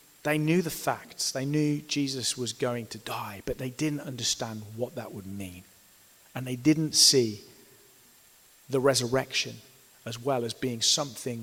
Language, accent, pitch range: English, British, 125-160 Hz